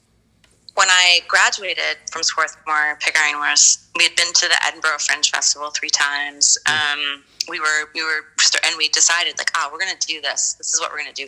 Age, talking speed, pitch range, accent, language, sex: 30-49, 195 wpm, 150-175 Hz, American, English, female